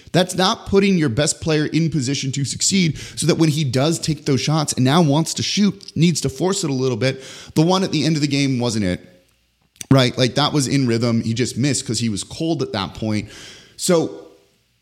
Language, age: English, 30-49